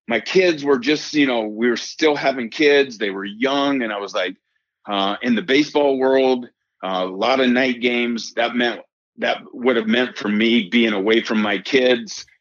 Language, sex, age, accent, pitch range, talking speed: English, male, 40-59, American, 105-130 Hz, 205 wpm